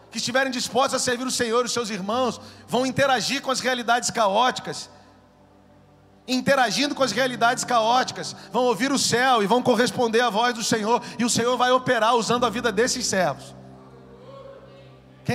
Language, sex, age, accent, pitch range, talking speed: Portuguese, male, 40-59, Brazilian, 195-270 Hz, 170 wpm